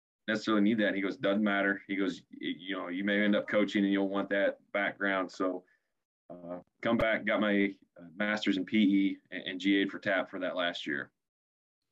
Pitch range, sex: 95-105 Hz, male